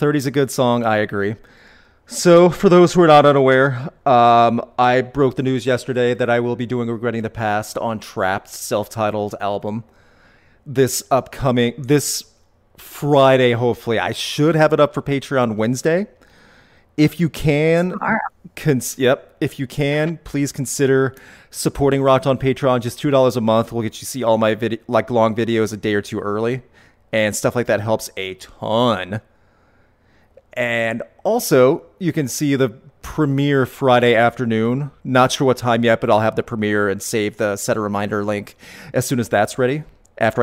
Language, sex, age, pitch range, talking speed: English, male, 30-49, 110-140 Hz, 175 wpm